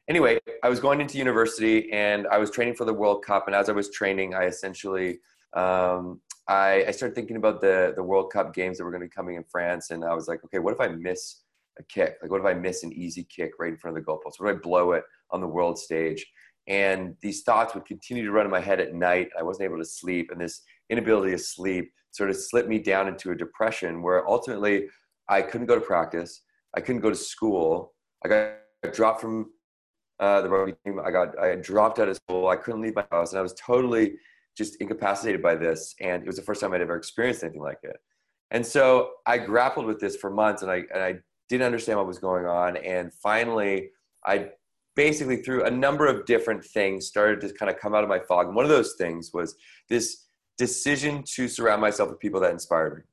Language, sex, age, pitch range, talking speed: English, male, 30-49, 90-115 Hz, 240 wpm